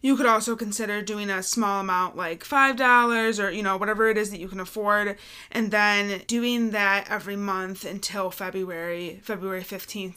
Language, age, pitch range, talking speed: English, 20-39, 185-230 Hz, 175 wpm